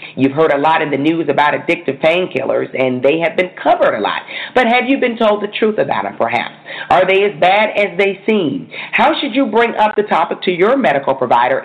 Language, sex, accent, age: English, female, American, 40-59